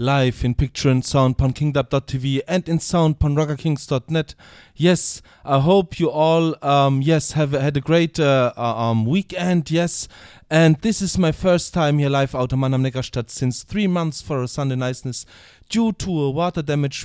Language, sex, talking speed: English, male, 175 wpm